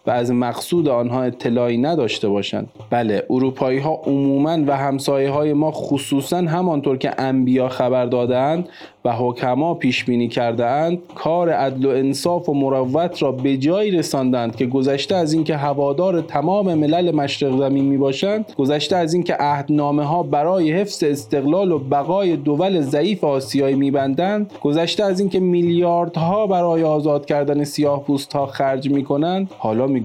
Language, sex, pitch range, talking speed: Persian, male, 125-165 Hz, 140 wpm